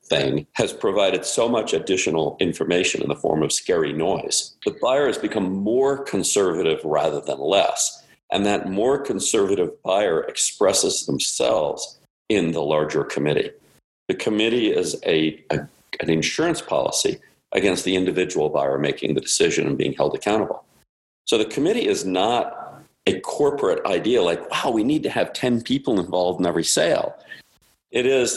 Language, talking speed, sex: English, 155 wpm, male